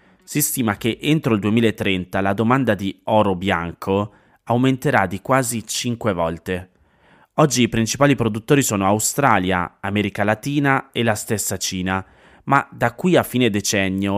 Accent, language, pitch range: native, Italian, 95-130 Hz